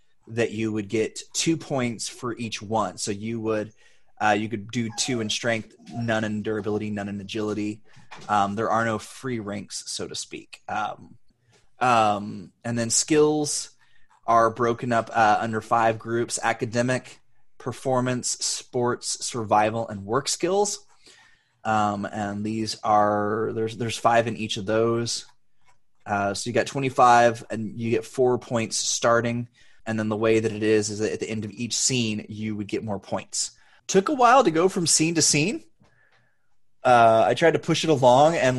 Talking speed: 175 wpm